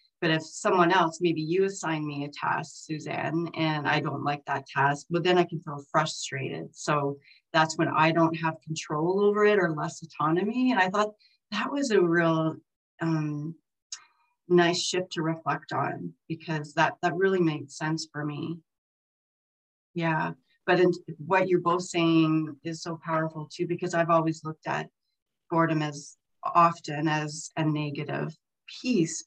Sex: female